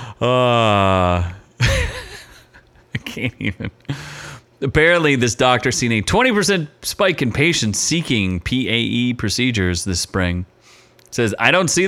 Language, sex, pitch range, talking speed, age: English, male, 105-150 Hz, 130 wpm, 30-49